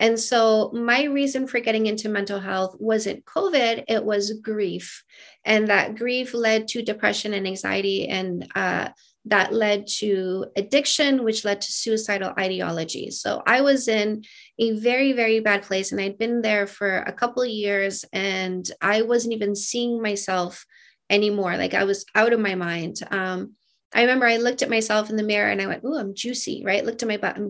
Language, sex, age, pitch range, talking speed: English, female, 30-49, 200-240 Hz, 190 wpm